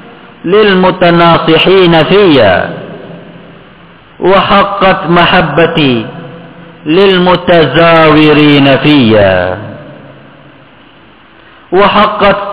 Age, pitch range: 50-69, 150-195 Hz